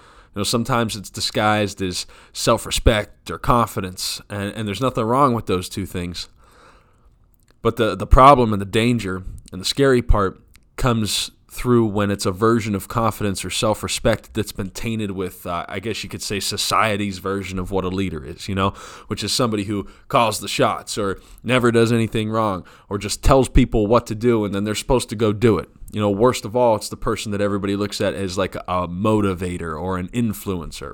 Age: 20-39